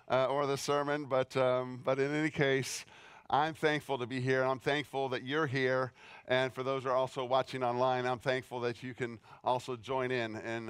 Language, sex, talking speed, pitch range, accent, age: English, male, 210 wpm, 120-150 Hz, American, 50-69